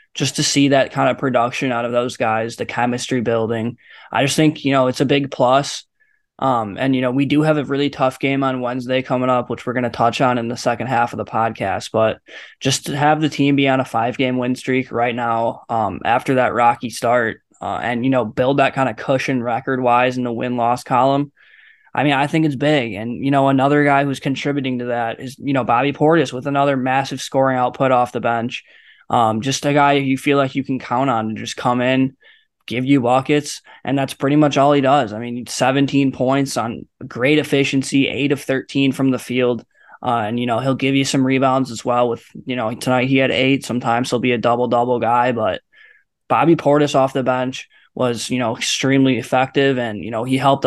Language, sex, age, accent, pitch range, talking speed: English, male, 10-29, American, 120-140 Hz, 230 wpm